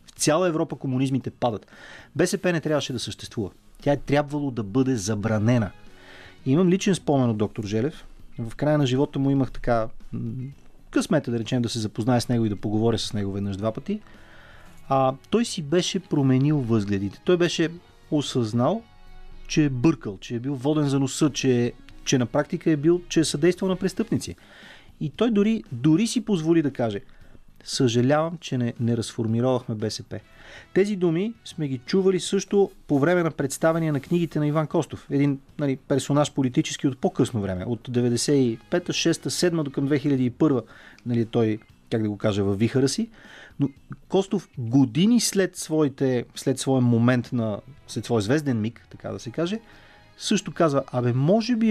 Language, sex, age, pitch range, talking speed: Bulgarian, male, 30-49, 115-160 Hz, 170 wpm